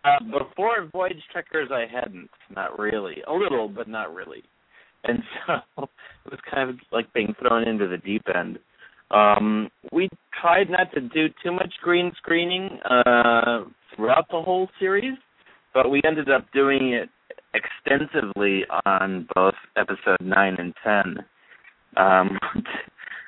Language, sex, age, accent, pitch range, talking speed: English, male, 30-49, American, 105-145 Hz, 140 wpm